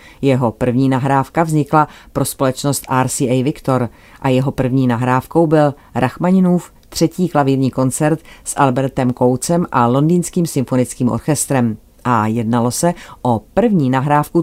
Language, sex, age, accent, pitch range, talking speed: Czech, female, 40-59, native, 125-150 Hz, 125 wpm